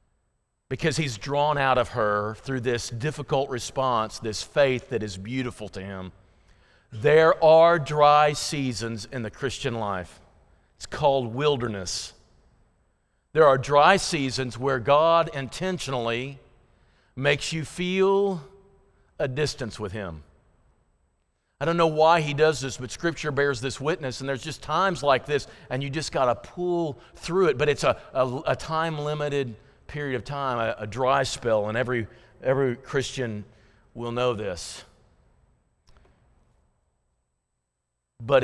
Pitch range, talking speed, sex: 105-145 Hz, 135 wpm, male